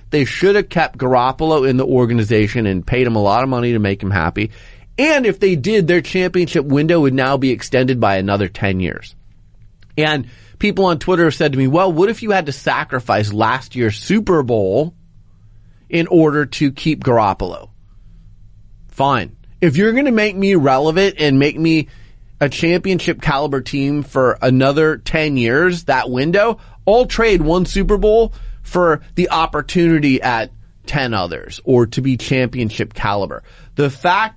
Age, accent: 30-49, American